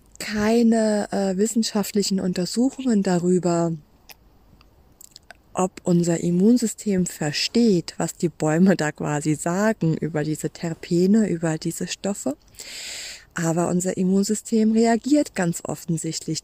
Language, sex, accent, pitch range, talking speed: German, female, German, 175-225 Hz, 100 wpm